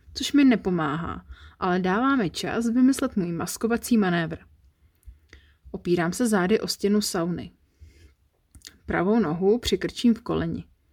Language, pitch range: Czech, 155-225 Hz